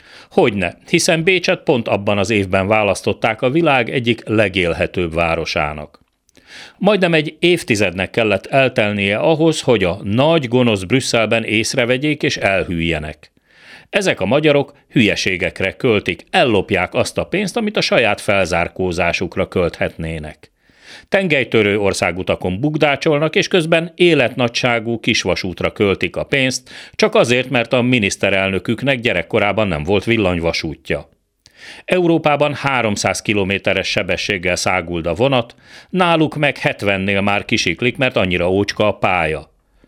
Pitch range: 95-140 Hz